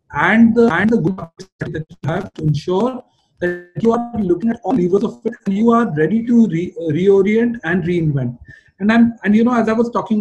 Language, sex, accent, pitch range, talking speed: English, male, Indian, 155-200 Hz, 225 wpm